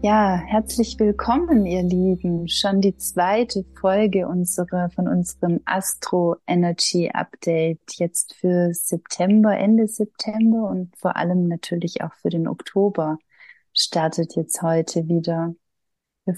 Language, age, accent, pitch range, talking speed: German, 30-49, German, 175-205 Hz, 120 wpm